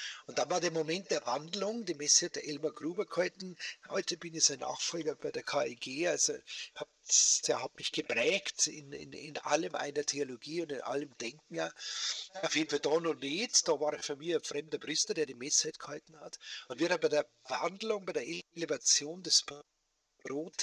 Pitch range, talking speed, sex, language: 150-185 Hz, 200 wpm, male, German